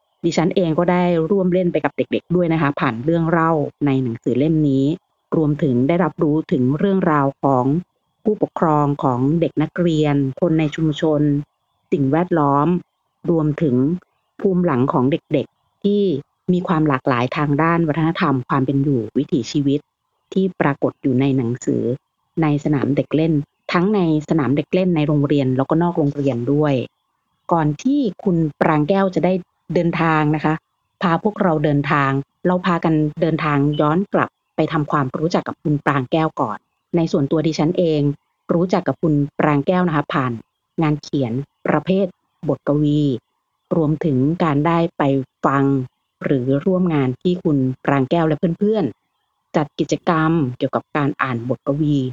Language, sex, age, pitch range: Thai, female, 30-49, 140-170 Hz